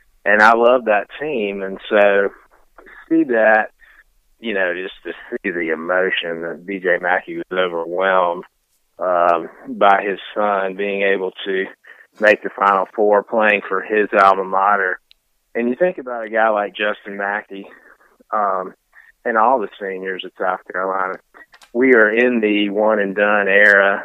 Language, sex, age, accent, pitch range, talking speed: English, male, 30-49, American, 100-110 Hz, 150 wpm